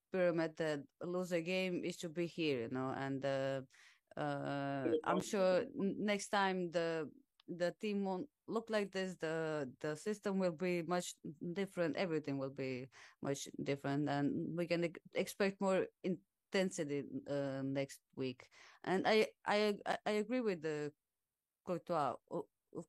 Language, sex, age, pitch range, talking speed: English, female, 30-49, 140-185 Hz, 145 wpm